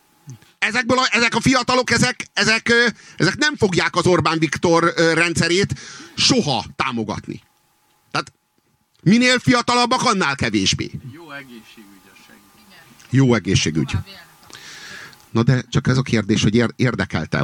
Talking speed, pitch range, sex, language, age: 115 wpm, 130-180 Hz, male, Hungarian, 50-69